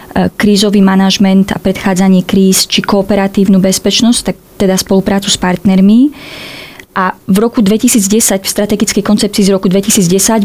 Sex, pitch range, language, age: female, 185-210 Hz, Slovak, 20-39